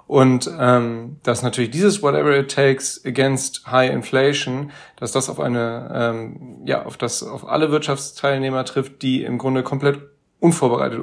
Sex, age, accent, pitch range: male, 30-49, German, 130-145 Hz